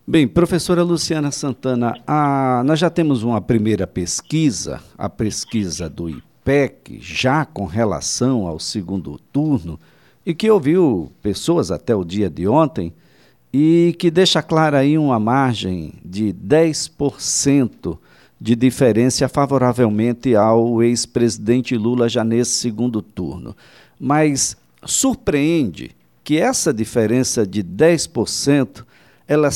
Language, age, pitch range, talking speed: Portuguese, 60-79, 110-145 Hz, 115 wpm